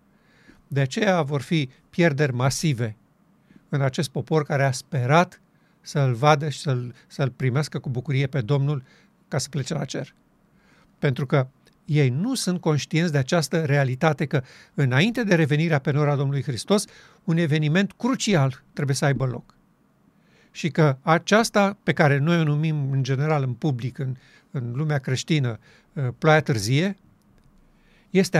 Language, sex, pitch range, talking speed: Romanian, male, 140-180 Hz, 150 wpm